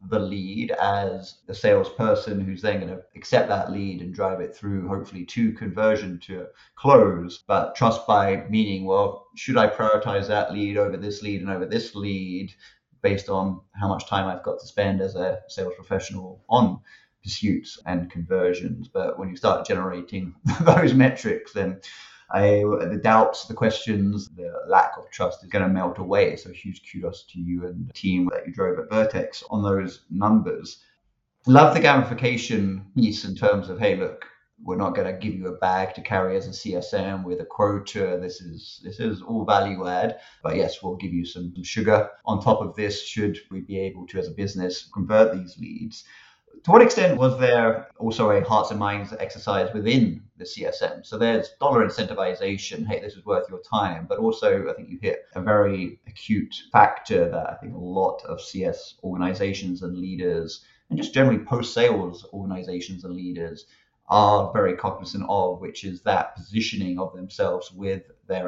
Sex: male